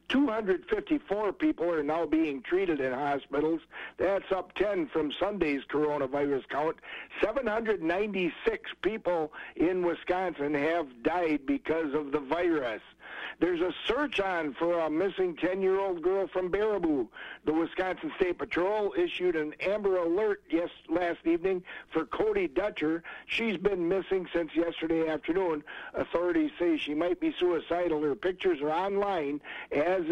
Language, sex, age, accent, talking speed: English, male, 60-79, American, 130 wpm